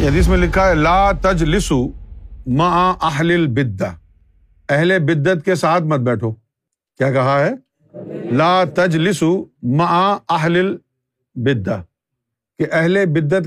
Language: Urdu